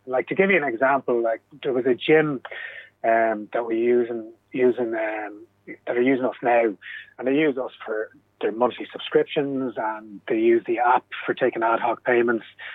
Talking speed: 195 wpm